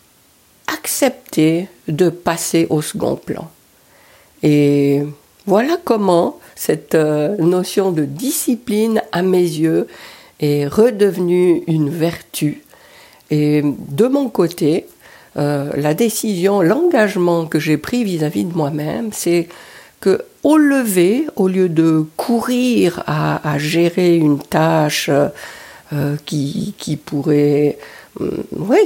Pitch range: 155-220 Hz